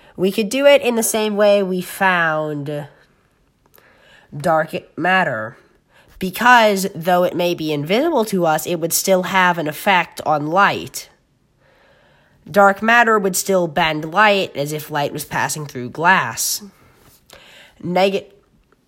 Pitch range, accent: 155-205 Hz, American